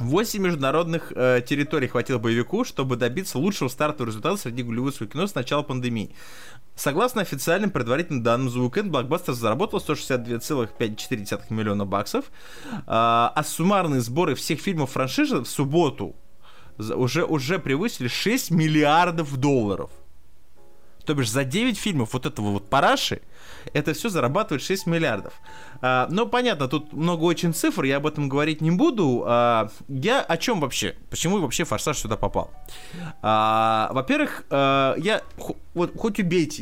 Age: 20-39